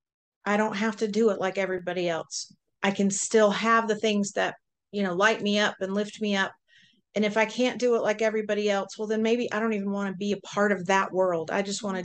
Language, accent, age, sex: English, American, 40-59, female